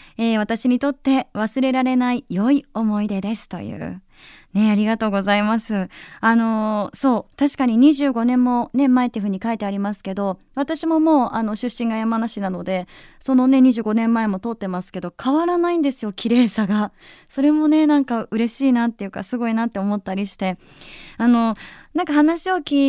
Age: 20-39